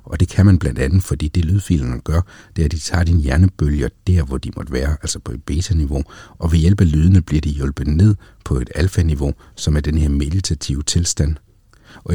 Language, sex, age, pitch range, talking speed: Danish, male, 60-79, 75-95 Hz, 220 wpm